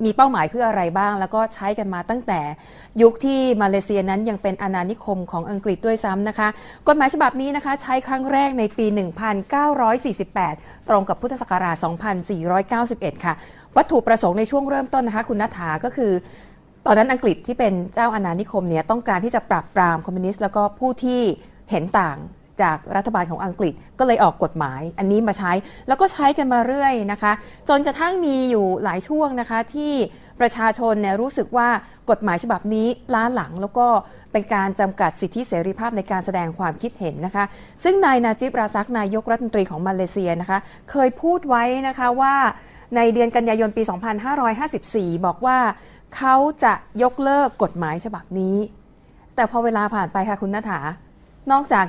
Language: Thai